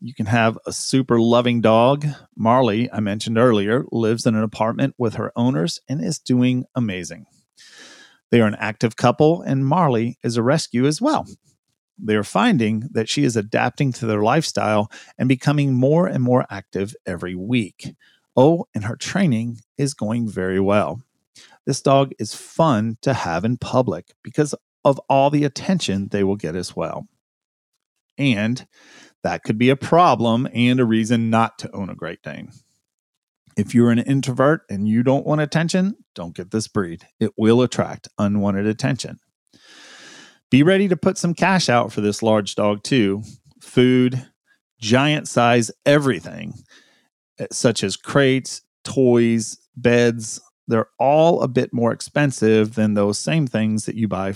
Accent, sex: American, male